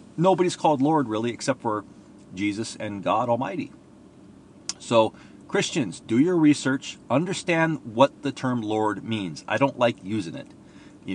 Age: 40-59